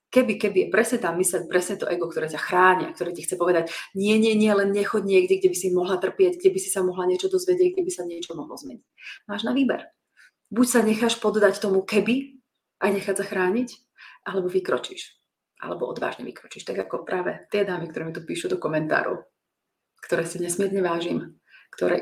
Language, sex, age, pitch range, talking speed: Slovak, female, 30-49, 175-220 Hz, 200 wpm